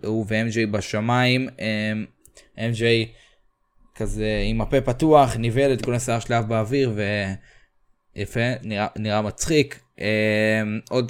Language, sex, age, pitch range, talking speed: Hebrew, male, 20-39, 110-130 Hz, 115 wpm